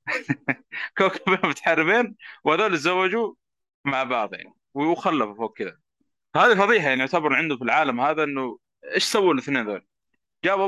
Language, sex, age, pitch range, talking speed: Arabic, male, 20-39, 125-175 Hz, 135 wpm